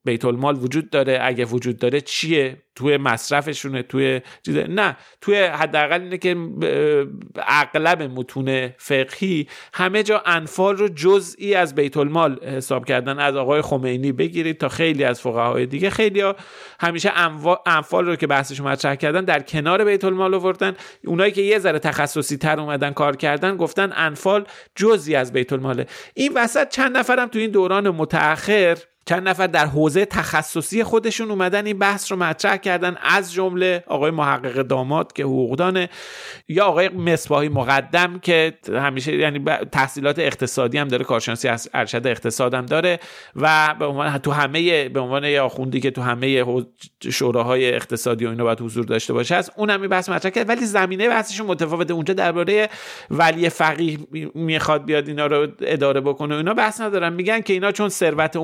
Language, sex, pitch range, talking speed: Persian, male, 140-190 Hz, 160 wpm